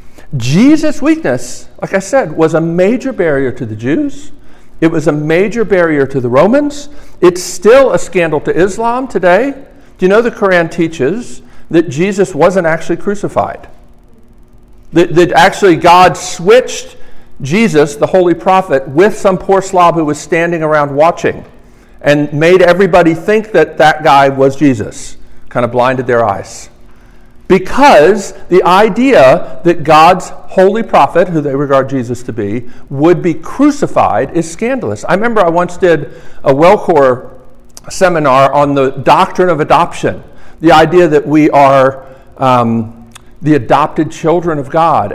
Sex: male